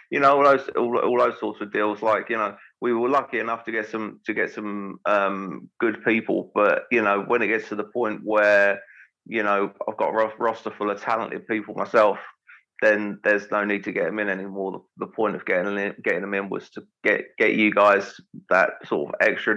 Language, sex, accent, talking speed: English, male, British, 225 wpm